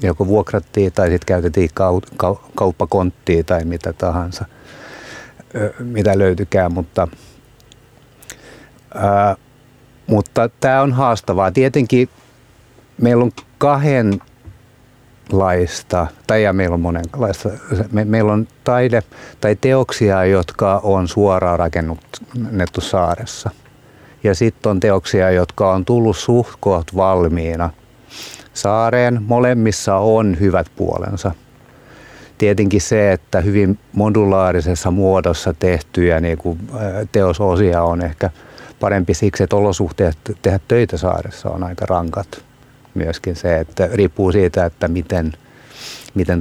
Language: Finnish